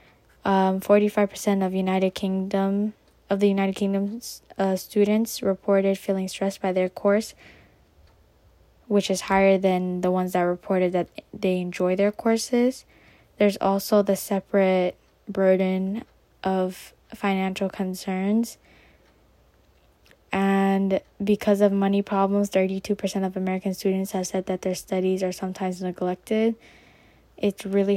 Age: 10-29